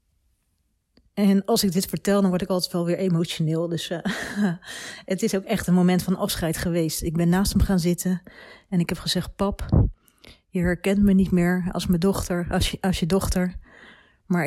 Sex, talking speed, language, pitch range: female, 185 wpm, Dutch, 170-195 Hz